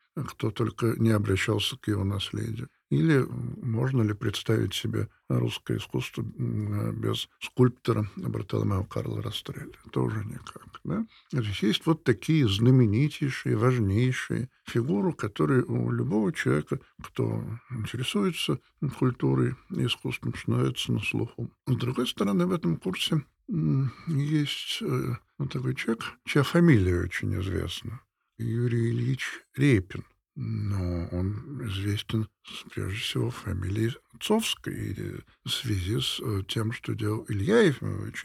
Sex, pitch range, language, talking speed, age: male, 105-135 Hz, Russian, 115 wpm, 50-69